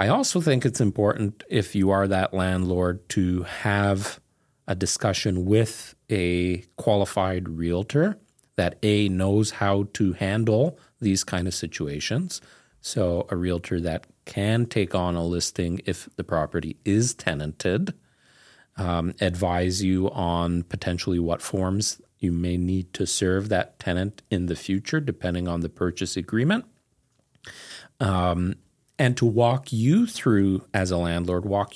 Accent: American